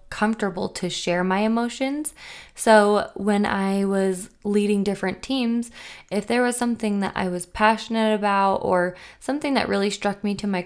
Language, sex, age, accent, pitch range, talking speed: English, female, 20-39, American, 180-205 Hz, 165 wpm